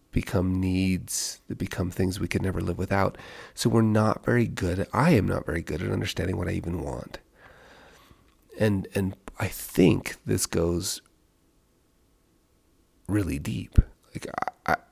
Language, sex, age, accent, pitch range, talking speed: English, male, 30-49, American, 90-110 Hz, 150 wpm